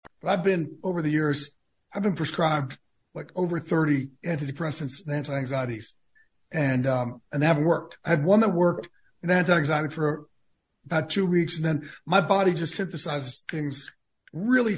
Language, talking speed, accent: English, 160 wpm, American